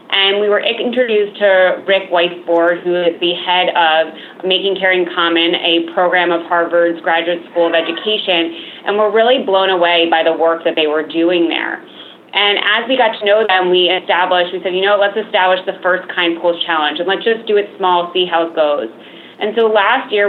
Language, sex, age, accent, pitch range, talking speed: English, female, 20-39, American, 170-200 Hz, 205 wpm